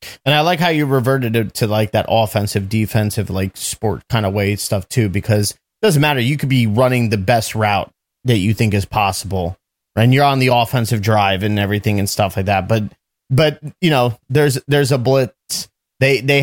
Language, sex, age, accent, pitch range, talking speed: English, male, 30-49, American, 105-135 Hz, 210 wpm